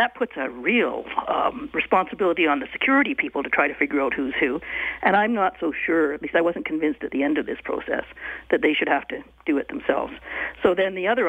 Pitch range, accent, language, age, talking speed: 160-230 Hz, American, English, 50-69, 240 wpm